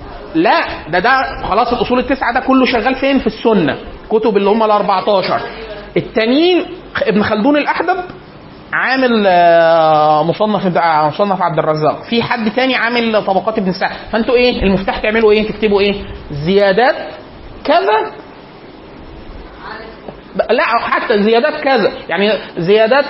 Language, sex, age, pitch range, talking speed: Arabic, male, 30-49, 190-240 Hz, 120 wpm